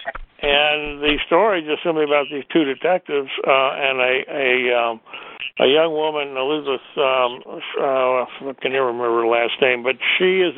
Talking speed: 165 wpm